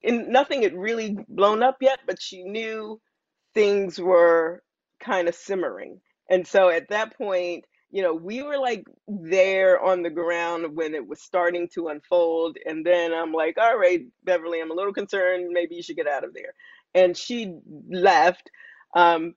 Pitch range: 165-230 Hz